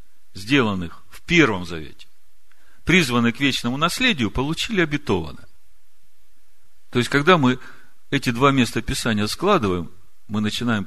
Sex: male